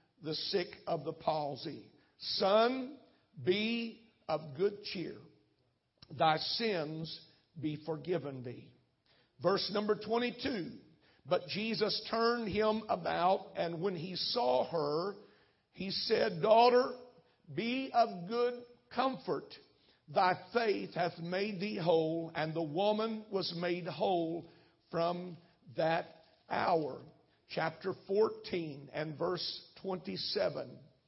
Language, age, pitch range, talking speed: English, 50-69, 165-215 Hz, 105 wpm